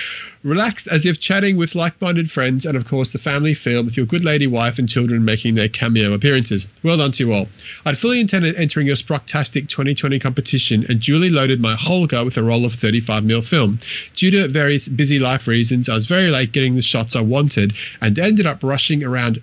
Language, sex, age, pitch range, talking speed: English, male, 30-49, 115-155 Hz, 215 wpm